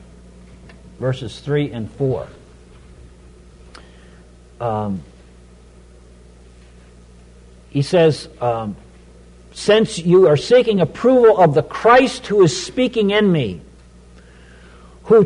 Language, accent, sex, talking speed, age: English, American, male, 85 wpm, 50-69